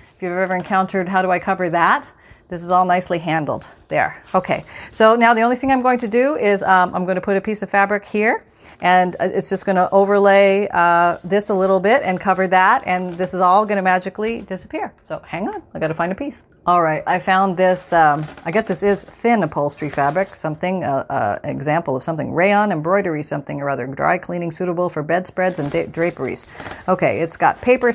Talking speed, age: 220 wpm, 40-59